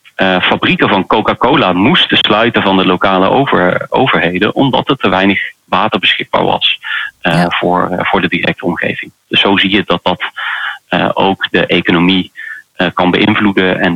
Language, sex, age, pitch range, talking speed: Dutch, male, 30-49, 90-110 Hz, 135 wpm